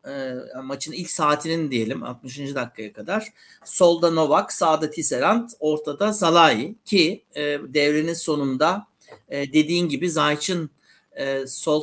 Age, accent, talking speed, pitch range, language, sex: 60-79, native, 120 wpm, 140-210 Hz, Turkish, male